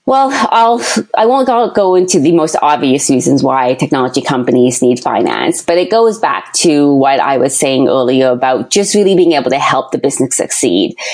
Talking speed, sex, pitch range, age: 195 wpm, female, 140-175 Hz, 20-39